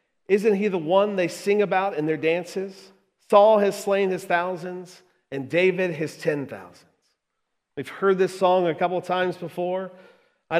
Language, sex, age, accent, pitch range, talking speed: English, male, 40-59, American, 160-190 Hz, 170 wpm